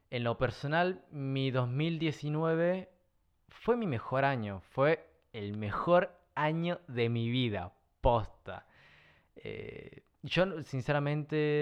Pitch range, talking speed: 115-150 Hz, 105 wpm